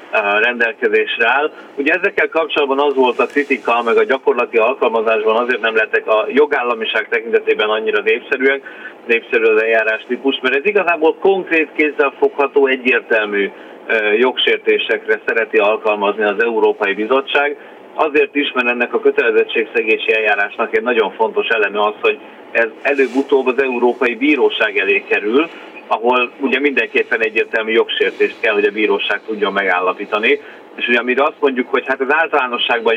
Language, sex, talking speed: Hungarian, male, 140 wpm